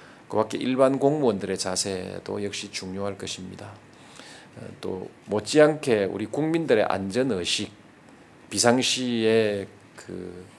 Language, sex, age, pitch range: Korean, male, 40-59, 95-125 Hz